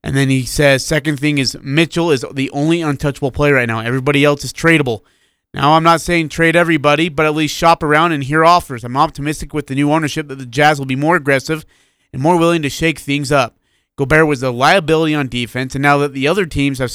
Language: English